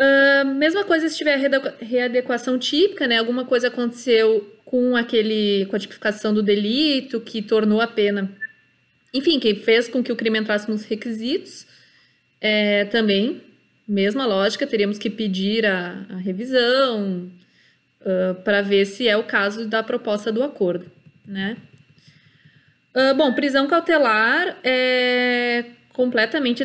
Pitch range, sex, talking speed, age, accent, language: 205-250 Hz, female, 135 wpm, 20-39, Brazilian, Portuguese